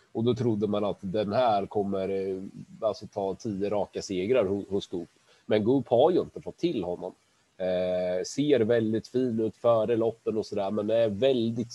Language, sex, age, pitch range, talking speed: Swedish, male, 30-49, 95-115 Hz, 180 wpm